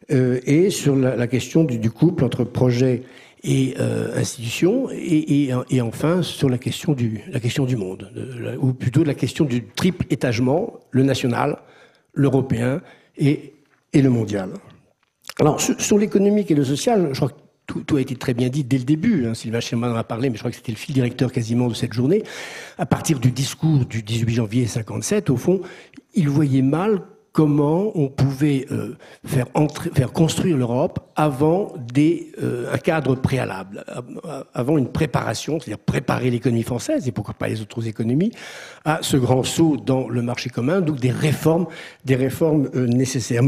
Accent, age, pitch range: French, 60-79, 125-155 Hz